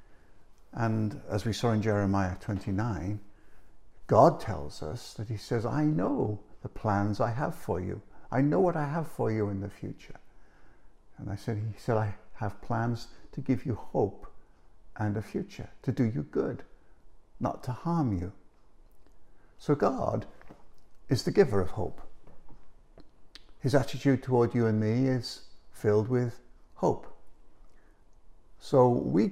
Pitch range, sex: 105-130 Hz, male